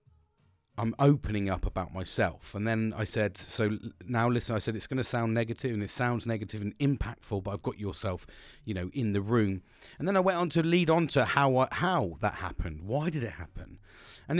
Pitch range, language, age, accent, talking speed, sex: 105-160 Hz, English, 30-49, British, 215 wpm, male